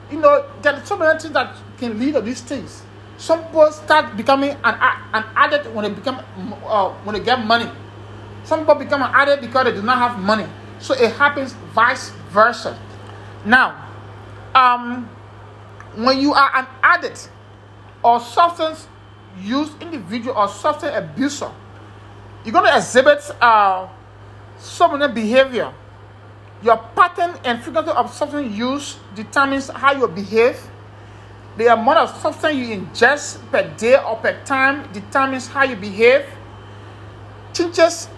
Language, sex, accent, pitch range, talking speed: English, male, Nigerian, 205-285 Hz, 145 wpm